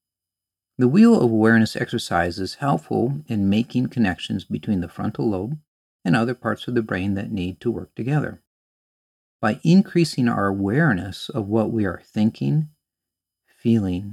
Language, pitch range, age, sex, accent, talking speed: English, 90-120 Hz, 50-69, male, American, 150 wpm